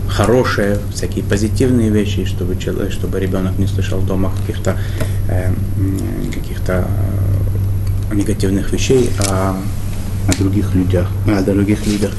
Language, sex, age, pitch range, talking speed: Russian, male, 20-39, 95-105 Hz, 120 wpm